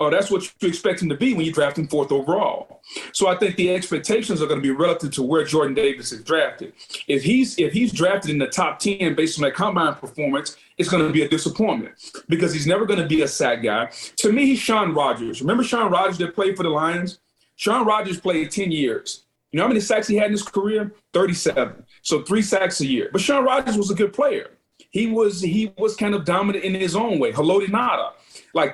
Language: English